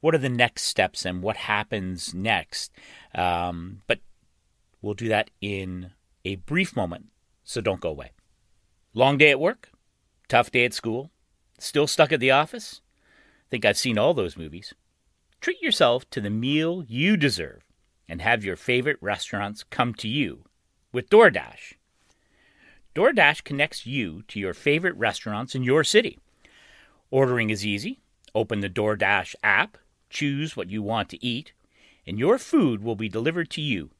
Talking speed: 160 wpm